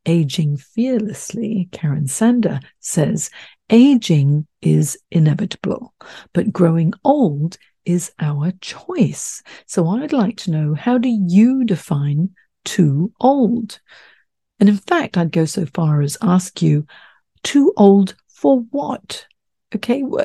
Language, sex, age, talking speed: English, female, 50-69, 120 wpm